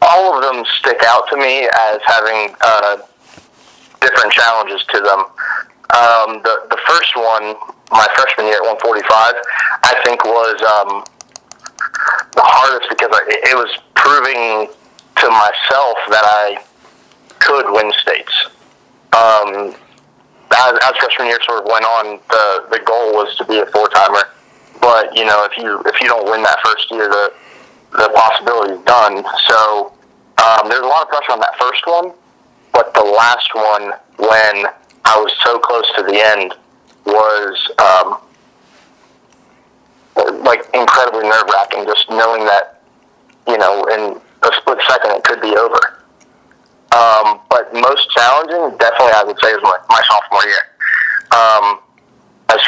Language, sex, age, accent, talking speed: English, male, 20-39, American, 150 wpm